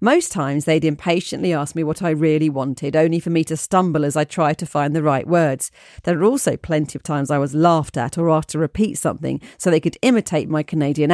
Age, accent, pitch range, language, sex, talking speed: 40-59, British, 150-185 Hz, English, female, 235 wpm